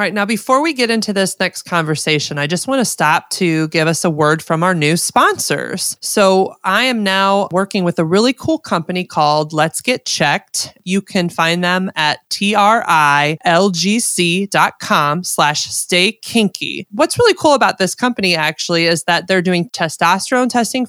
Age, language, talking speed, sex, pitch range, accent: 20-39, English, 170 wpm, male, 165-210 Hz, American